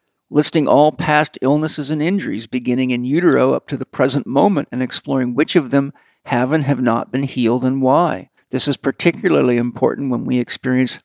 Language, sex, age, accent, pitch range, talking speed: English, male, 50-69, American, 125-145 Hz, 185 wpm